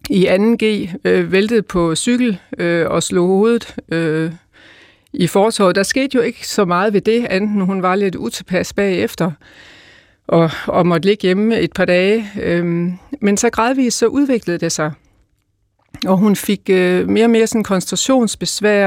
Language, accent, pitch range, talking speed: Danish, native, 180-220 Hz, 165 wpm